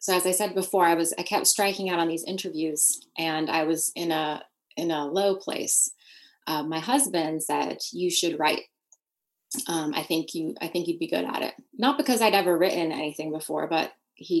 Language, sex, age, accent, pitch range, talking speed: English, female, 20-39, American, 160-200 Hz, 210 wpm